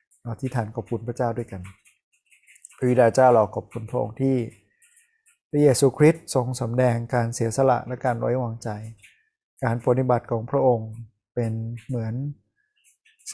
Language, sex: Thai, male